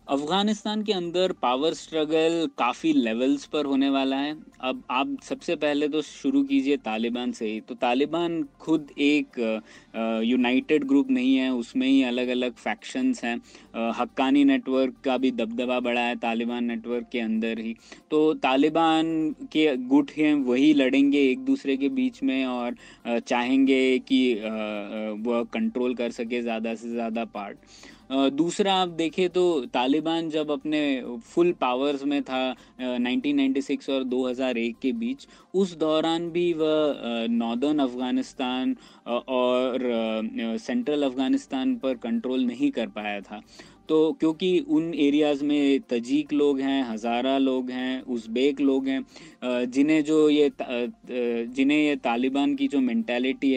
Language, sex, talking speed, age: Hindi, male, 140 wpm, 20-39